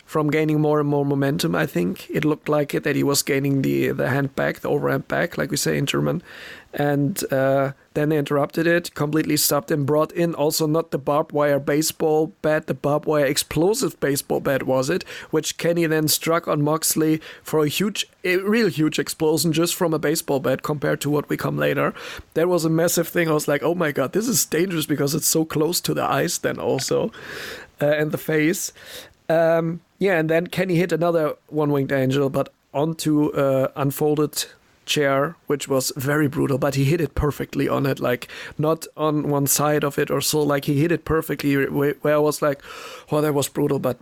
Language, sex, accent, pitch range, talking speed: English, male, German, 140-160 Hz, 210 wpm